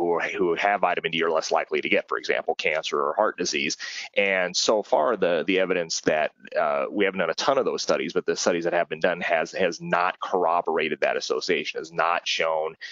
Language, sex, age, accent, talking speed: Italian, male, 30-49, American, 220 wpm